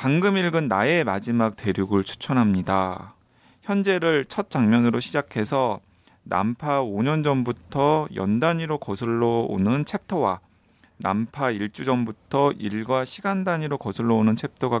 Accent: native